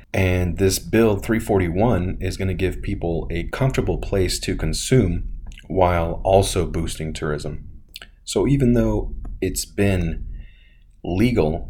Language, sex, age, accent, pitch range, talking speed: English, male, 30-49, American, 80-100 Hz, 125 wpm